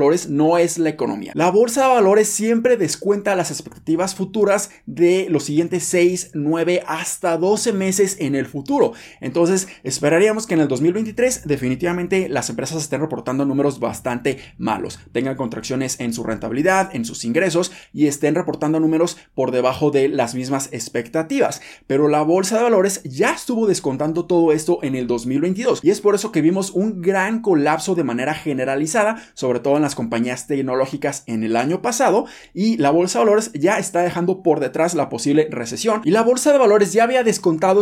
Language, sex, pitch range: Spanish, male, 140-195 Hz